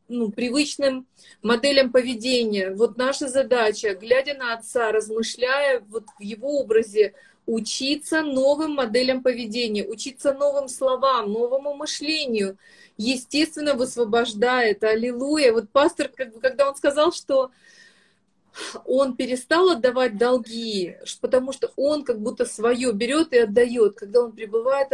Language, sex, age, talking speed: Russian, female, 30-49, 125 wpm